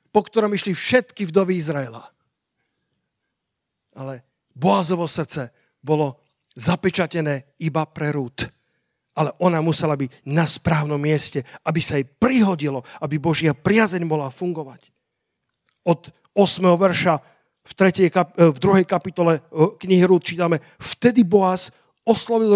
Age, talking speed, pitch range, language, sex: 50-69, 110 wpm, 160-200 Hz, Slovak, male